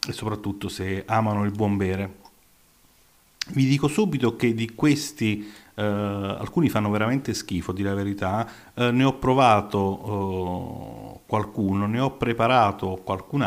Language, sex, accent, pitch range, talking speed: Italian, male, native, 100-125 Hz, 135 wpm